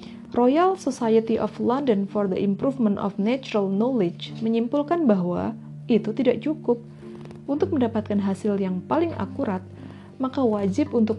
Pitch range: 190-225 Hz